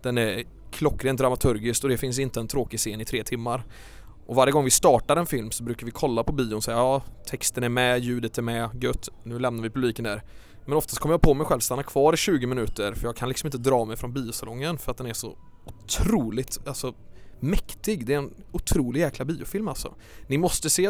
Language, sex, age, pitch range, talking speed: English, male, 20-39, 115-145 Hz, 235 wpm